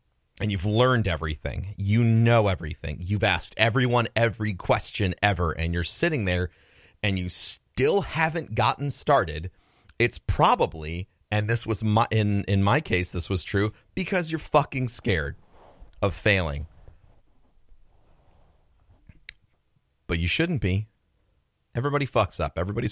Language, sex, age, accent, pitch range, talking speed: English, male, 30-49, American, 85-110 Hz, 130 wpm